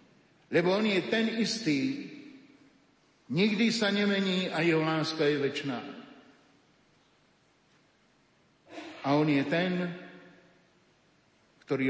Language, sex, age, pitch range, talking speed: Slovak, male, 50-69, 150-195 Hz, 90 wpm